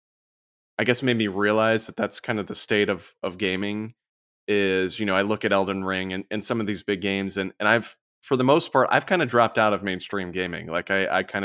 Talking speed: 250 wpm